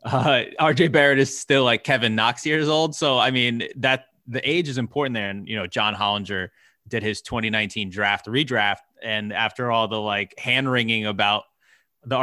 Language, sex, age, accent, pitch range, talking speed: English, male, 20-39, American, 105-130 Hz, 185 wpm